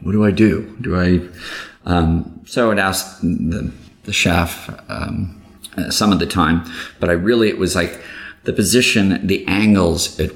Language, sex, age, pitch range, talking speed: English, male, 30-49, 85-95 Hz, 180 wpm